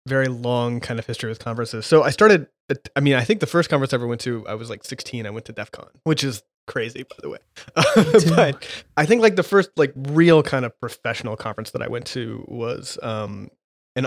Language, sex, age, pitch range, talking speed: English, male, 20-39, 110-135 Hz, 230 wpm